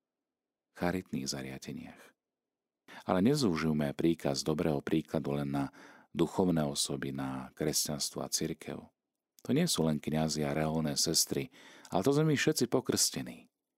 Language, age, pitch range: Slovak, 40-59, 75-105 Hz